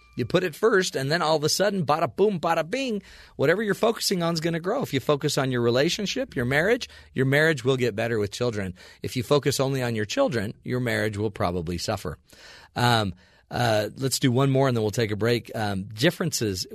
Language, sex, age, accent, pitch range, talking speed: English, male, 40-59, American, 110-145 Hz, 225 wpm